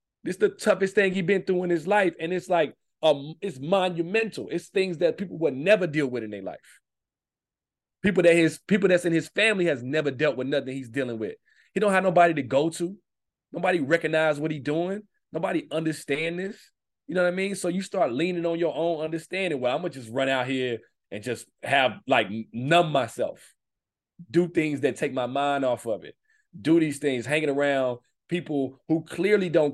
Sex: male